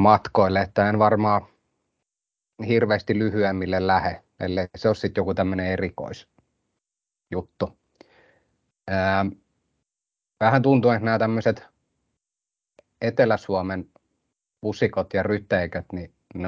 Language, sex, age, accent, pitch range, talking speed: Finnish, male, 30-49, native, 90-105 Hz, 90 wpm